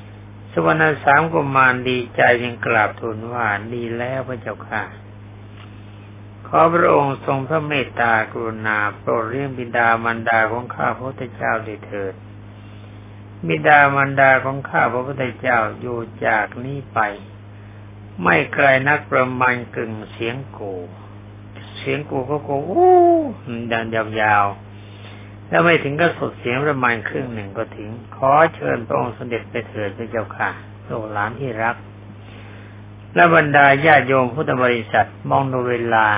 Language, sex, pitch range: Thai, male, 105-125 Hz